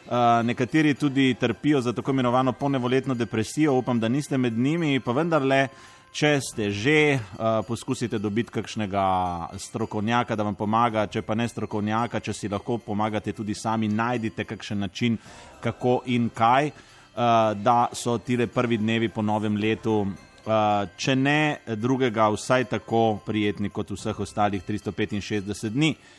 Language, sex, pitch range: Italian, male, 110-135 Hz